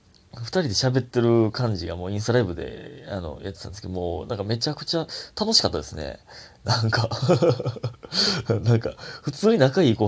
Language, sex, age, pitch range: Japanese, male, 30-49, 95-130 Hz